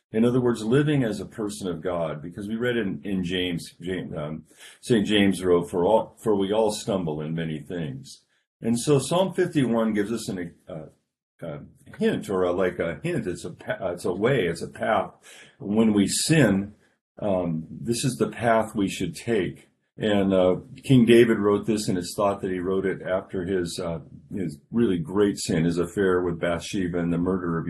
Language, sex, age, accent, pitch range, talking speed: English, male, 50-69, American, 90-110 Hz, 200 wpm